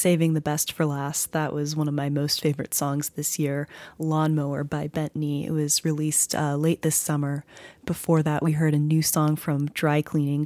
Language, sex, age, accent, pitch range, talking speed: English, female, 20-39, American, 145-160 Hz, 205 wpm